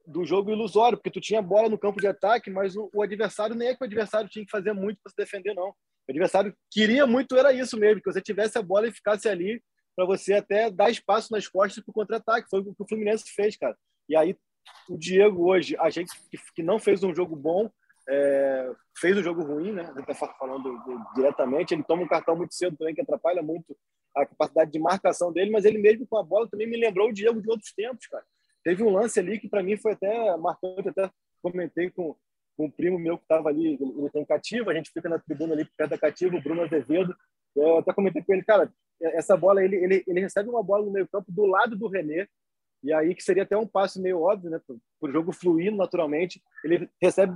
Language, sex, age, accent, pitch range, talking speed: Portuguese, male, 20-39, Brazilian, 170-215 Hz, 235 wpm